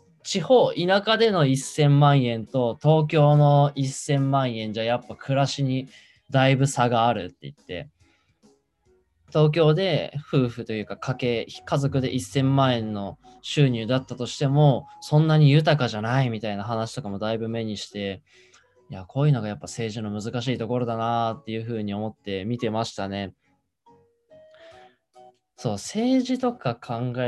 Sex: male